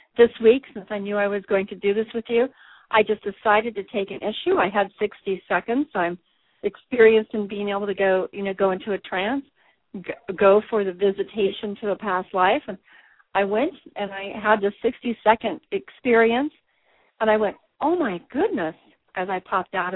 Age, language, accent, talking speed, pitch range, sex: 50-69, English, American, 200 wpm, 195-235 Hz, female